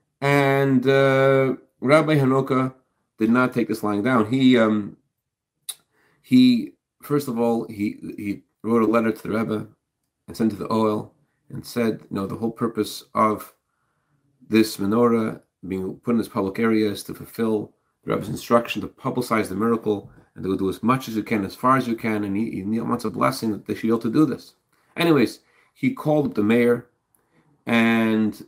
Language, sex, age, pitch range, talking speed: English, male, 40-59, 110-135 Hz, 190 wpm